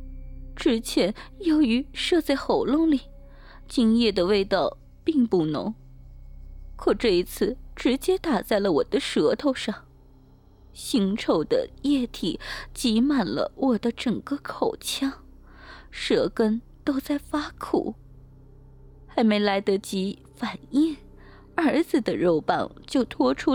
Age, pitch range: 20-39, 210-325 Hz